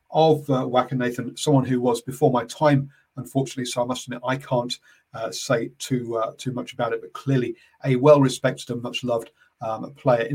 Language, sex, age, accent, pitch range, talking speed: English, male, 40-59, British, 130-155 Hz, 195 wpm